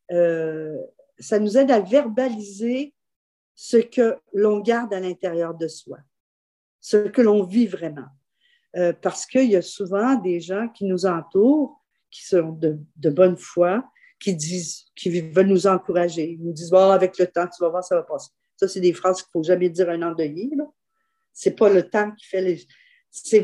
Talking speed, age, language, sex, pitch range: 190 wpm, 50-69, French, female, 180-255 Hz